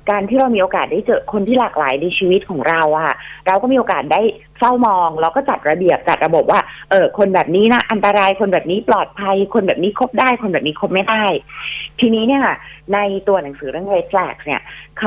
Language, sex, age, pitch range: Thai, female, 30-49, 160-225 Hz